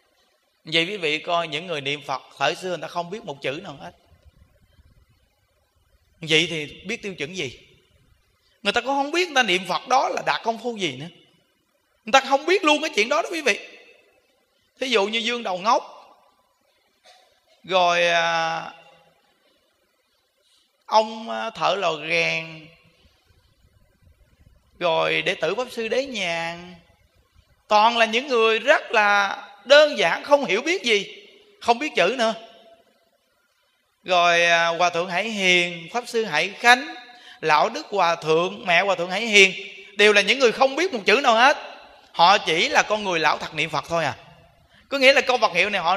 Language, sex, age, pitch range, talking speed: Vietnamese, male, 20-39, 170-255 Hz, 170 wpm